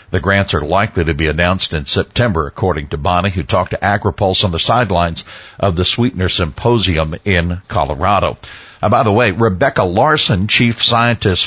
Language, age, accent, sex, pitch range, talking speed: English, 60-79, American, male, 90-115 Hz, 175 wpm